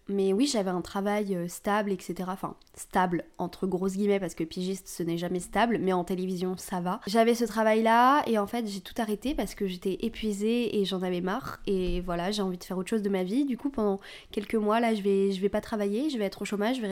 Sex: female